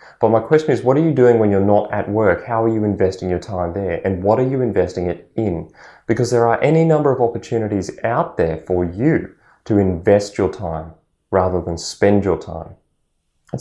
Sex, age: male, 20-39